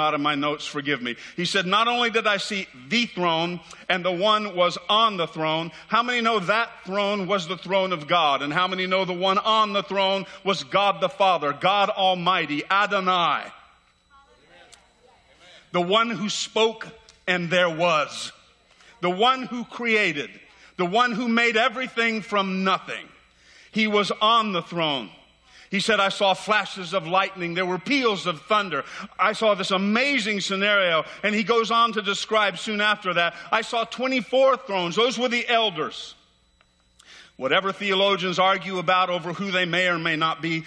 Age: 50-69